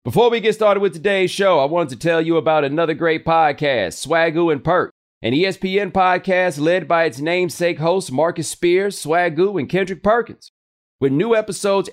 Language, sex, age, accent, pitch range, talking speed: English, male, 40-59, American, 160-185 Hz, 180 wpm